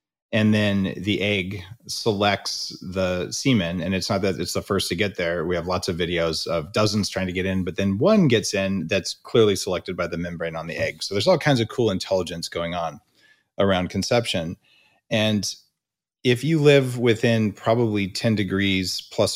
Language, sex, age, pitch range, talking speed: English, male, 30-49, 95-115 Hz, 190 wpm